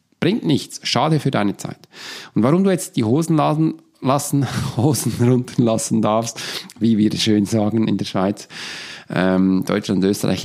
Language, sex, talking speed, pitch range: German, male, 165 wpm, 110-170 Hz